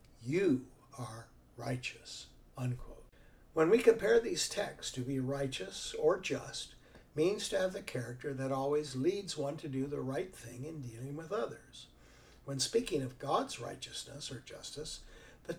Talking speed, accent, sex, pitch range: 155 wpm, American, male, 120-145 Hz